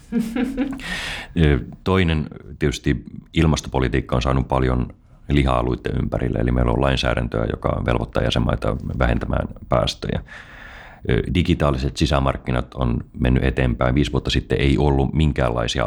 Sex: male